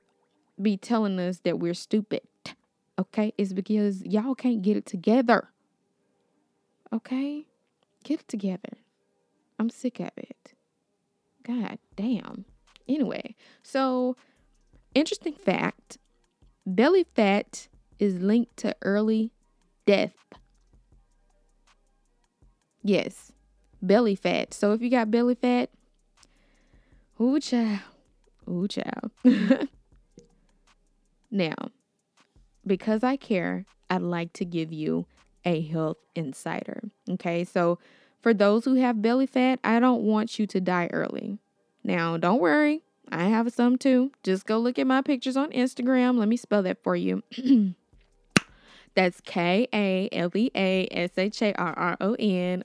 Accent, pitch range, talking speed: American, 190-250 Hz, 110 wpm